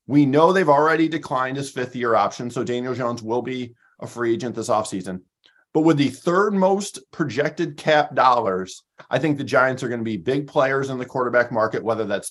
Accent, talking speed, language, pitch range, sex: American, 205 wpm, English, 120-165 Hz, male